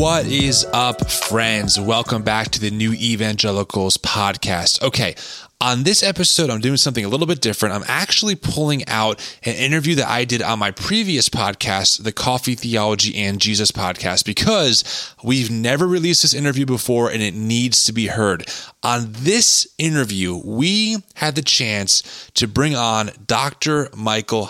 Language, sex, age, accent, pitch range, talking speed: English, male, 20-39, American, 105-140 Hz, 160 wpm